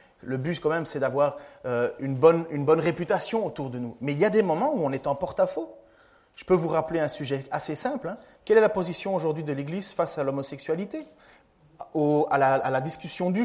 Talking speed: 230 wpm